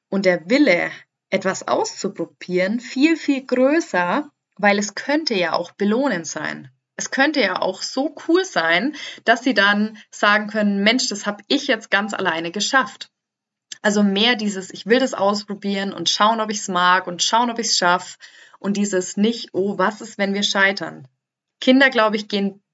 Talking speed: 175 wpm